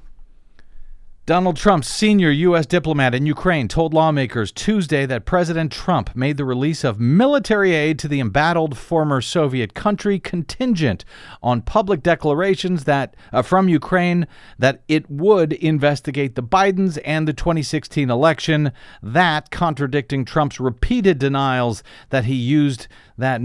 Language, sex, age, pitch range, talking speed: English, male, 50-69, 120-160 Hz, 135 wpm